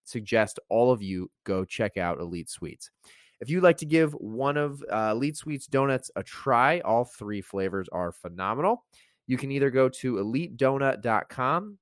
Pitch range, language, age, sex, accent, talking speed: 100-135 Hz, English, 30-49, male, American, 170 wpm